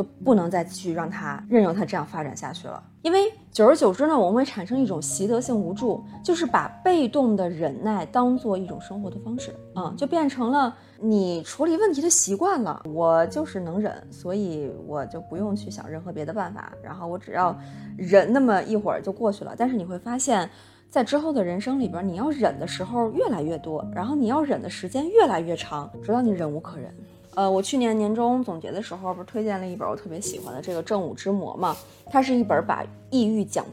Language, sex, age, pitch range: Chinese, female, 20-39, 180-245 Hz